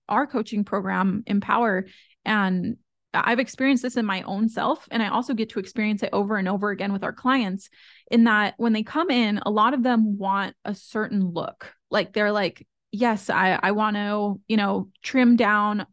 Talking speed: 190 wpm